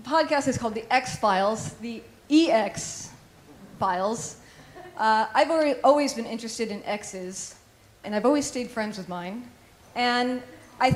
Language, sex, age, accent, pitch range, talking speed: English, female, 40-59, American, 190-245 Hz, 125 wpm